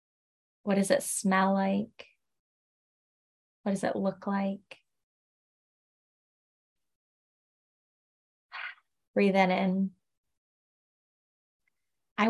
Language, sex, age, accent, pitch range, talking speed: English, female, 20-39, American, 185-210 Hz, 70 wpm